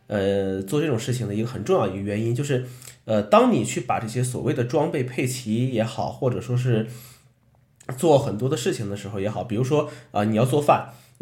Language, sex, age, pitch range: Chinese, male, 20-39, 100-125 Hz